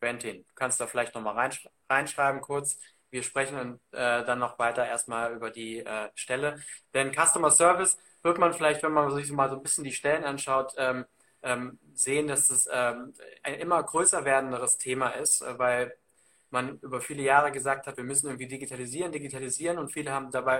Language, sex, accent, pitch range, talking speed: German, male, German, 130-150 Hz, 180 wpm